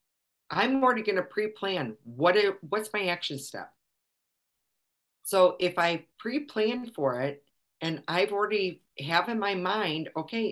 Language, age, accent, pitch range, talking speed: English, 50-69, American, 140-190 Hz, 130 wpm